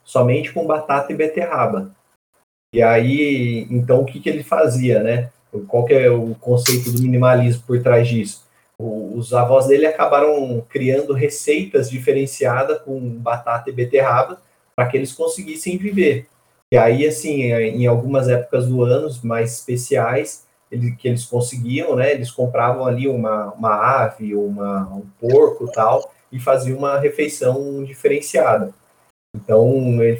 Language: Portuguese